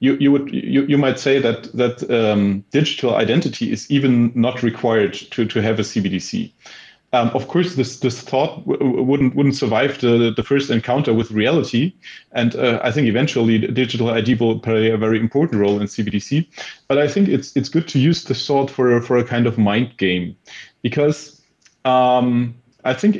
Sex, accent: male, German